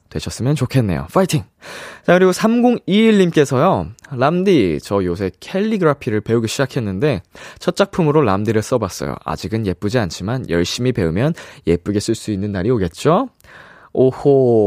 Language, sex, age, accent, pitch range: Korean, male, 20-39, native, 105-170 Hz